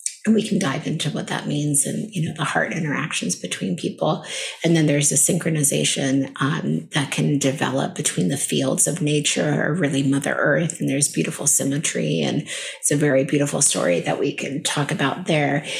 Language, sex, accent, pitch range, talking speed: English, female, American, 145-170 Hz, 190 wpm